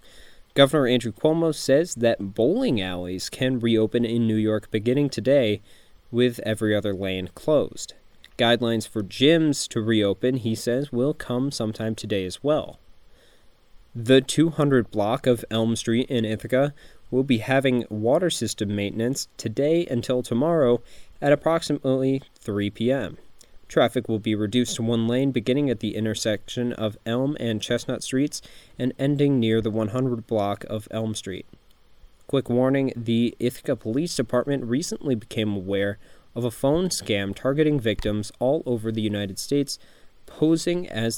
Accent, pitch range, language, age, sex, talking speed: American, 110-135 Hz, English, 20-39, male, 145 wpm